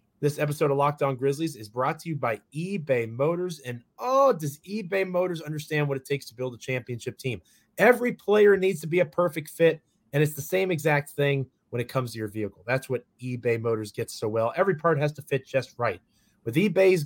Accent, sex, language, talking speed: American, male, English, 220 wpm